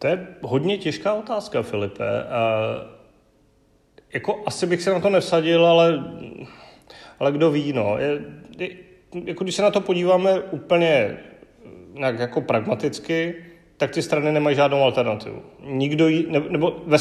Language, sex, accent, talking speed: Czech, male, native, 150 wpm